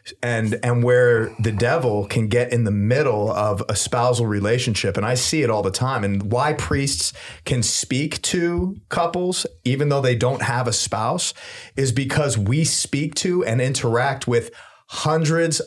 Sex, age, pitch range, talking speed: male, 30-49, 115-150 Hz, 170 wpm